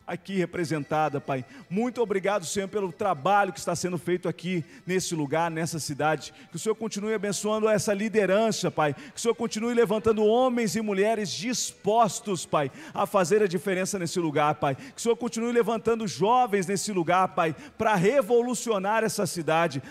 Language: Portuguese